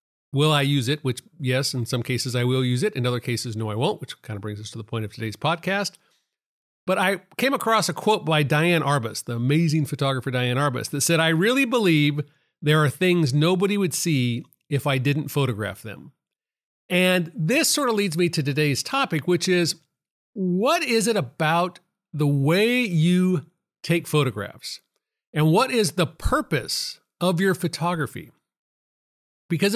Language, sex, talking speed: English, male, 180 wpm